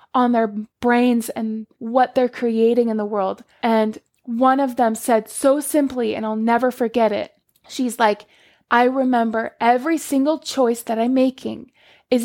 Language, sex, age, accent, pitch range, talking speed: English, female, 20-39, American, 225-285 Hz, 160 wpm